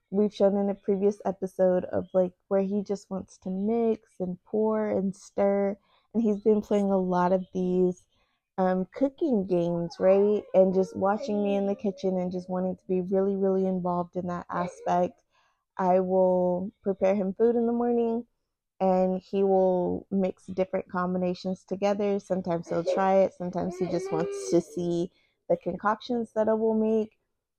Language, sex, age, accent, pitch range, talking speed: English, female, 20-39, American, 185-210 Hz, 170 wpm